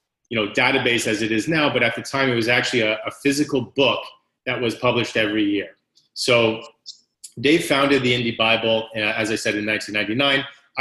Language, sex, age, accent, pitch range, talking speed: English, male, 30-49, American, 105-125 Hz, 195 wpm